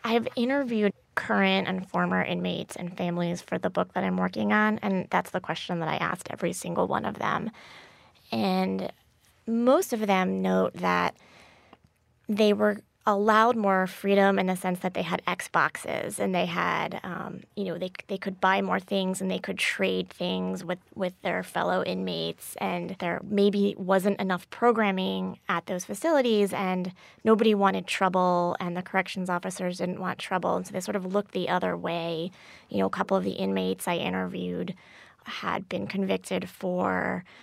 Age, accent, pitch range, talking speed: 20-39, American, 170-200 Hz, 175 wpm